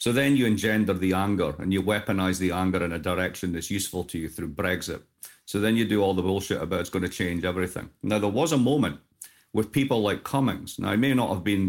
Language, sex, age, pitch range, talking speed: English, male, 40-59, 90-110 Hz, 245 wpm